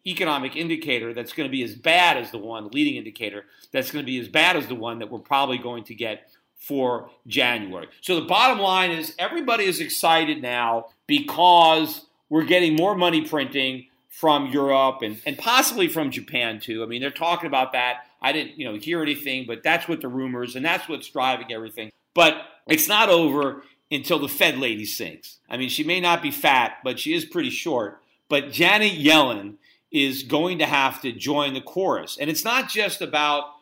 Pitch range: 135-190 Hz